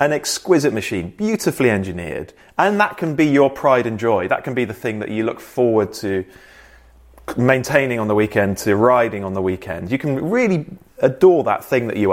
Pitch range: 110-150 Hz